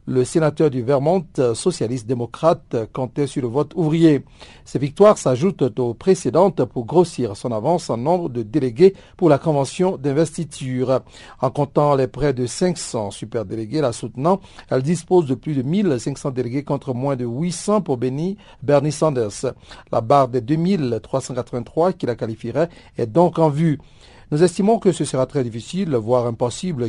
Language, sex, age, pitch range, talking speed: French, male, 50-69, 125-165 Hz, 160 wpm